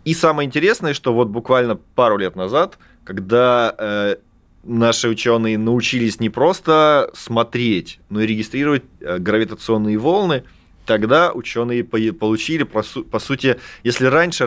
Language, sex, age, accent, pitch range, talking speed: Russian, male, 20-39, native, 100-125 Hz, 115 wpm